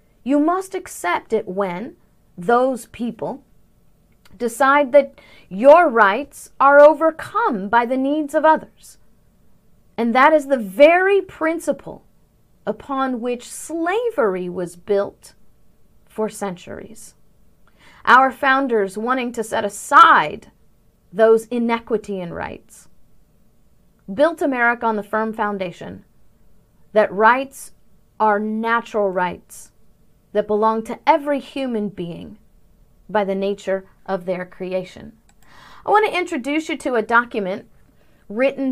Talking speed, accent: 115 wpm, American